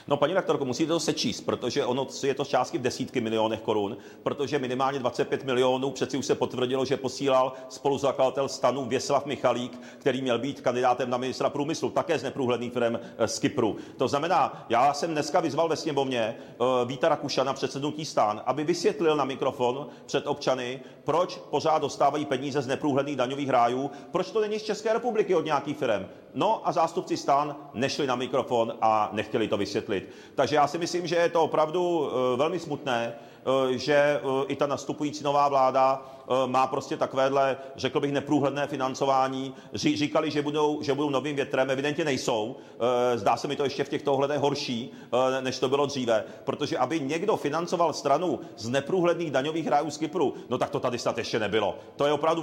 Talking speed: 180 wpm